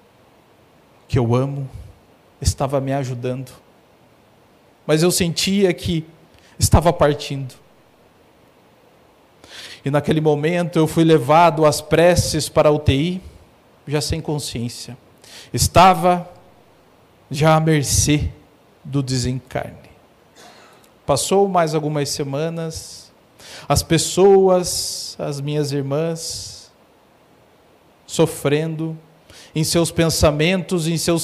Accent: Brazilian